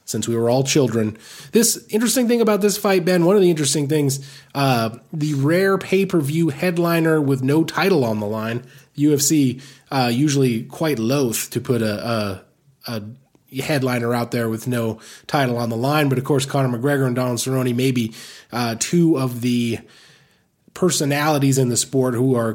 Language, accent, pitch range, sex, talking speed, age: English, American, 115-150 Hz, male, 175 wpm, 20-39